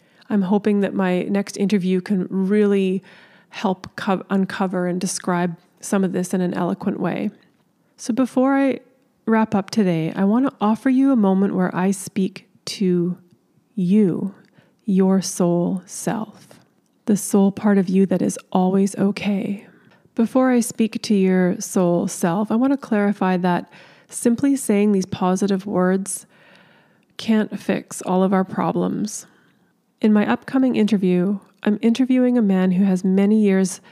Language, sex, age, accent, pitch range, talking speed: English, female, 20-39, American, 185-210 Hz, 150 wpm